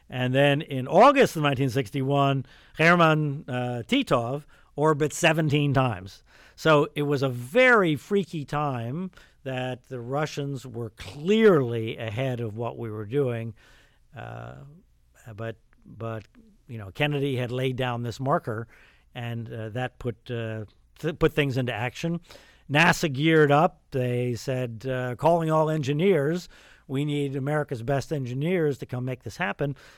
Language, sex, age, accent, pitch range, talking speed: English, male, 50-69, American, 120-150 Hz, 140 wpm